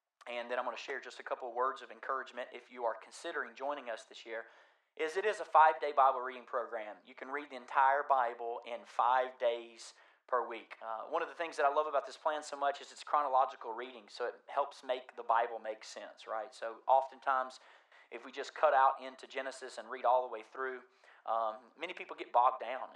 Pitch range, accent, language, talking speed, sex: 115-140 Hz, American, English, 225 wpm, male